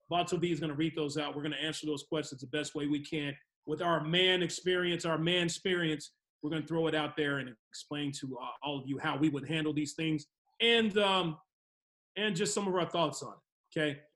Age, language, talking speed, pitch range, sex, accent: 30-49, English, 240 wpm, 155-185 Hz, male, American